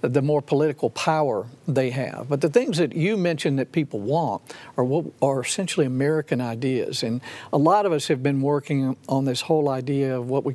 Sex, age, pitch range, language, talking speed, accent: male, 60-79, 135-170 Hz, English, 200 wpm, American